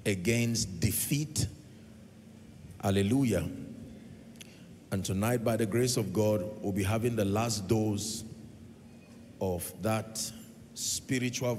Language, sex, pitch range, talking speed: English, male, 110-125 Hz, 100 wpm